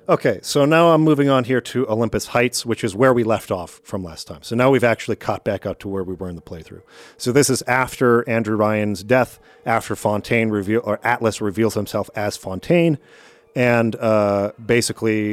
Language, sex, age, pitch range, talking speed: English, male, 40-59, 105-125 Hz, 205 wpm